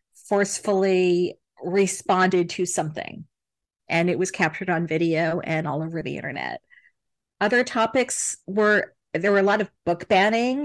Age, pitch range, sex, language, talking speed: 40-59, 180-205 Hz, female, English, 140 wpm